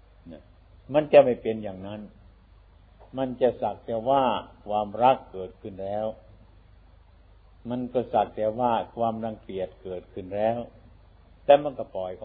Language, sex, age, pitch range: Thai, male, 60-79, 90-115 Hz